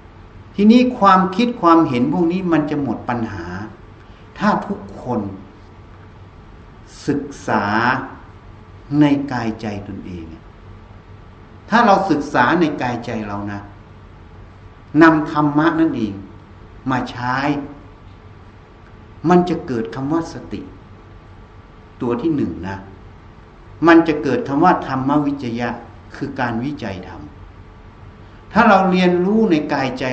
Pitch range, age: 100-145 Hz, 60-79